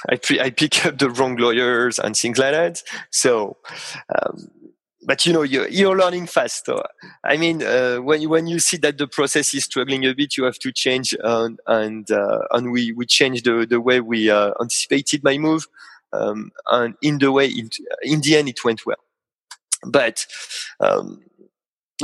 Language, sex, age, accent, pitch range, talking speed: English, male, 30-49, French, 120-155 Hz, 190 wpm